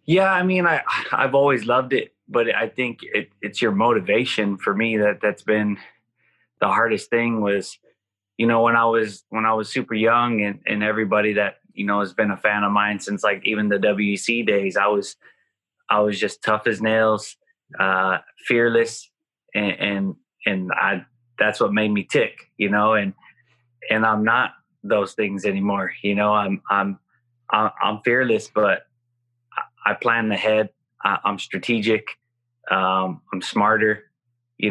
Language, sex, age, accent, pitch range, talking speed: English, male, 20-39, American, 100-120 Hz, 170 wpm